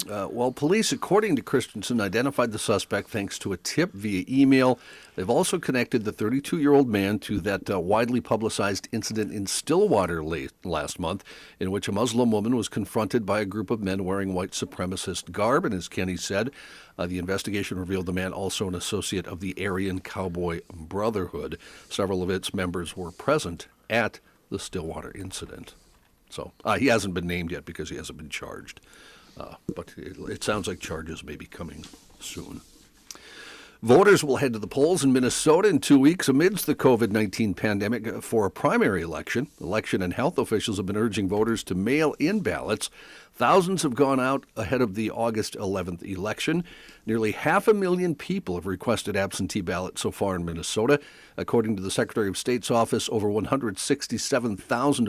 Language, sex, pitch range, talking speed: English, male, 95-125 Hz, 175 wpm